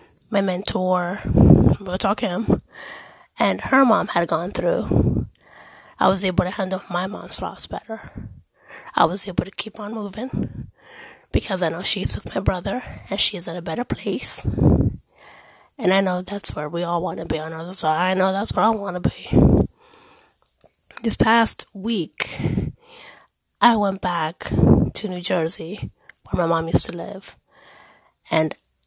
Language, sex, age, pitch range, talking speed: English, female, 20-39, 180-225 Hz, 165 wpm